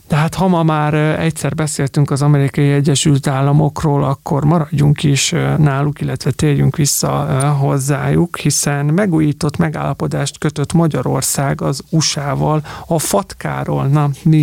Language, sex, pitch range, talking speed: Hungarian, male, 140-160 Hz, 120 wpm